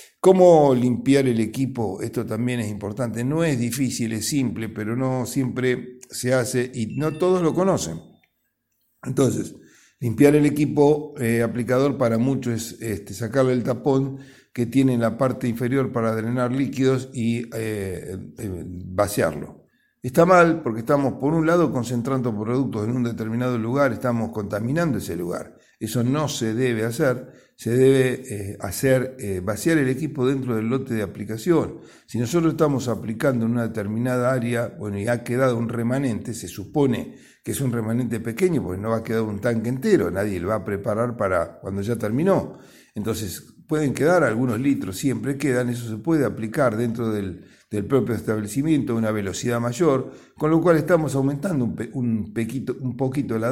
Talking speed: 165 wpm